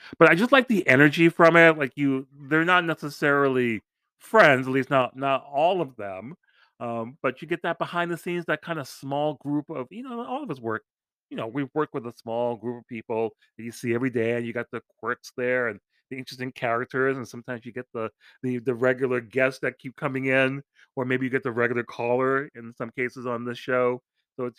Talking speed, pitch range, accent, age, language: 230 wpm, 120-145 Hz, American, 30-49, English